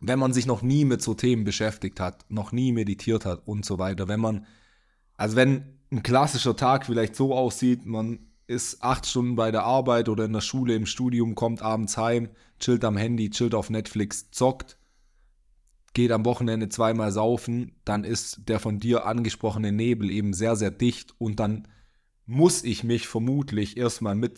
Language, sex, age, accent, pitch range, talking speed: German, male, 20-39, German, 110-125 Hz, 180 wpm